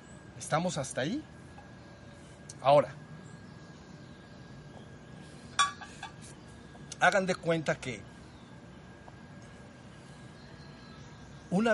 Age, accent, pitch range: 50-69, Mexican, 130-165 Hz